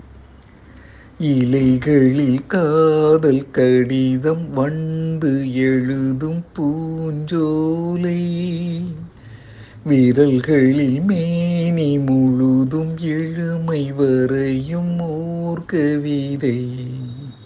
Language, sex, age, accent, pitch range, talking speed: Tamil, male, 50-69, native, 130-180 Hz, 40 wpm